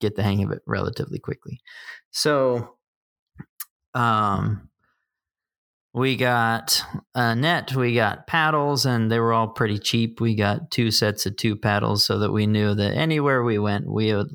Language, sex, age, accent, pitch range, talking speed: English, male, 30-49, American, 100-120 Hz, 165 wpm